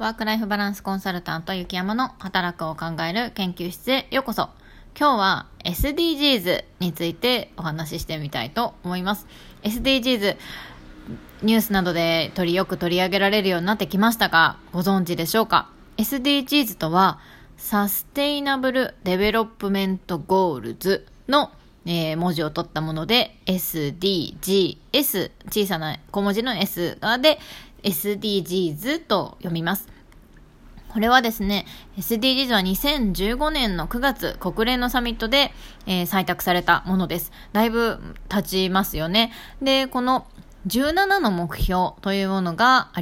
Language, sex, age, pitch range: Japanese, female, 20-39, 175-250 Hz